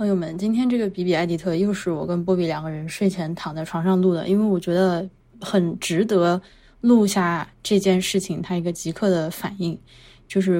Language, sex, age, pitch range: Chinese, female, 20-39, 170-200 Hz